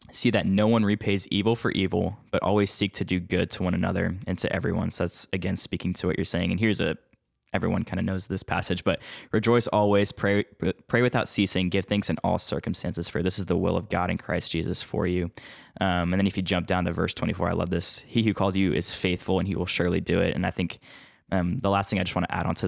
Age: 10-29